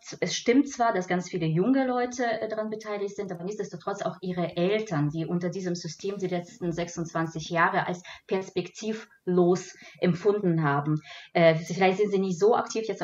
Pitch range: 165-205 Hz